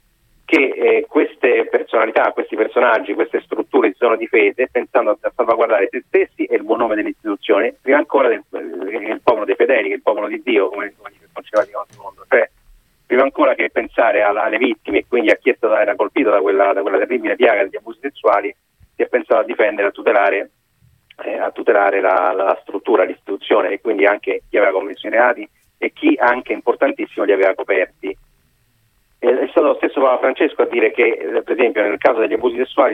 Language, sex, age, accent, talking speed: Italian, male, 40-59, native, 200 wpm